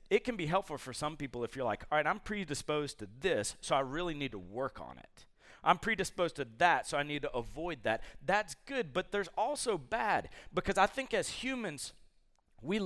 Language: English